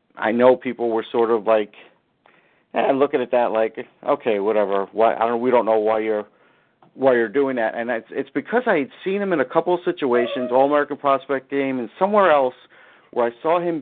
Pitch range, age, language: 125-165 Hz, 50-69, English